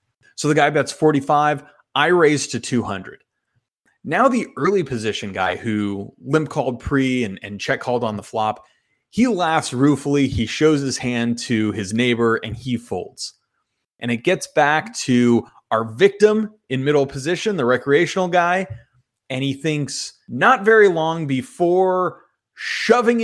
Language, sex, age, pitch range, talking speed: English, male, 30-49, 115-155 Hz, 150 wpm